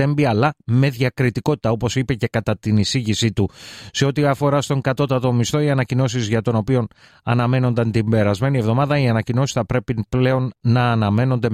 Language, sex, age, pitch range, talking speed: Greek, male, 30-49, 110-135 Hz, 165 wpm